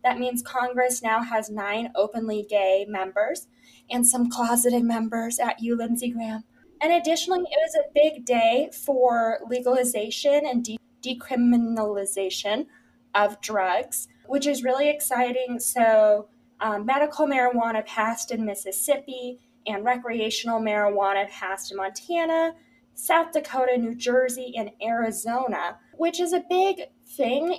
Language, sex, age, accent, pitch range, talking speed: English, female, 10-29, American, 215-265 Hz, 125 wpm